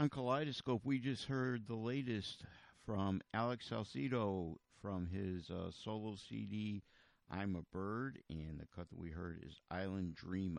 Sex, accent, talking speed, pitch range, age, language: male, American, 155 wpm, 90-115 Hz, 50-69, English